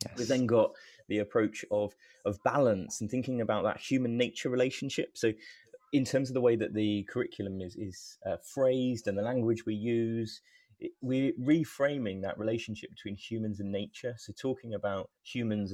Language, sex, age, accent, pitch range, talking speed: English, male, 20-39, British, 100-125 Hz, 170 wpm